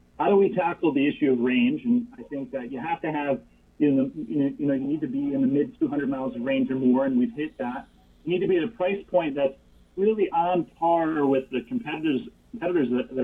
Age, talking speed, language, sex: 30-49, 245 wpm, English, male